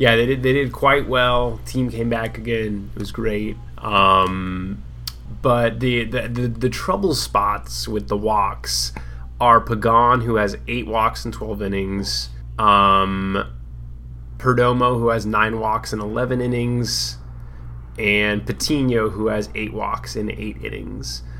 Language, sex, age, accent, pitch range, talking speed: English, male, 20-39, American, 100-125 Hz, 145 wpm